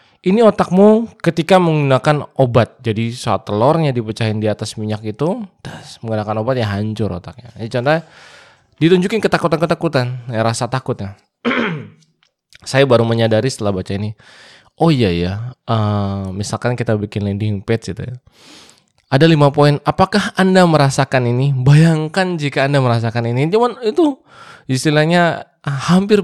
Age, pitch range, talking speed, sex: 20-39, 110-150 Hz, 130 wpm, male